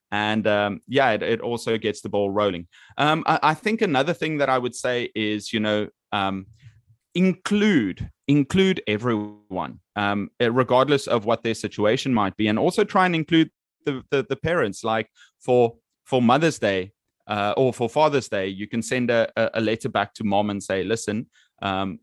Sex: male